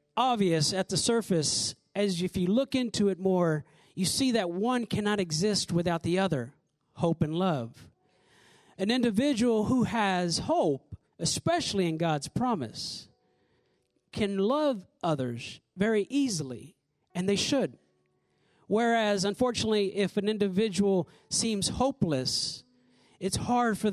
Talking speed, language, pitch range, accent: 125 wpm, English, 170-225 Hz, American